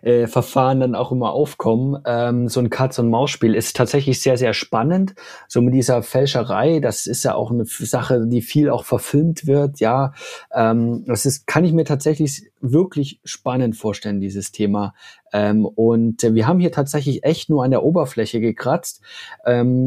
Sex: male